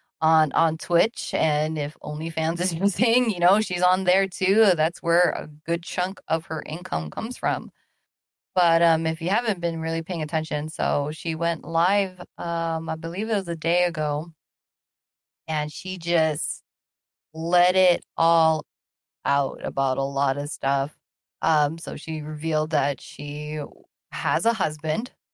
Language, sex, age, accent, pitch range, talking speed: English, female, 20-39, American, 150-180 Hz, 155 wpm